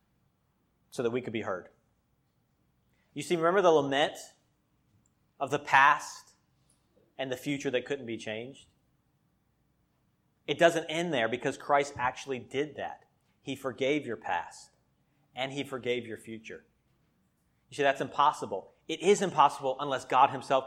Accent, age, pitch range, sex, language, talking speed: American, 30-49, 125-170 Hz, male, English, 140 wpm